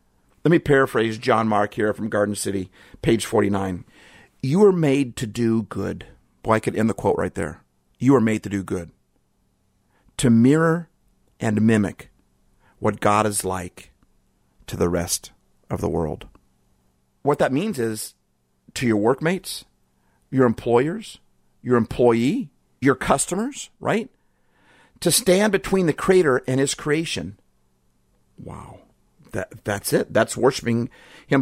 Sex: male